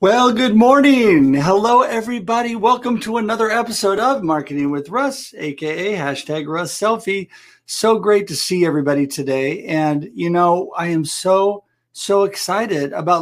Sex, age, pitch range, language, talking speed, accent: male, 50-69, 165-205 Hz, English, 145 wpm, American